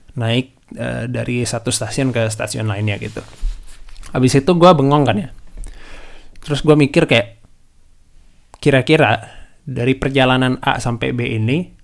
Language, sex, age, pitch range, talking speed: Indonesian, male, 20-39, 110-140 Hz, 130 wpm